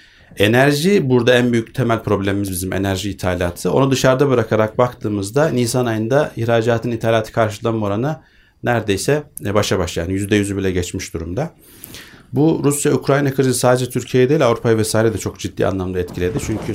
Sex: male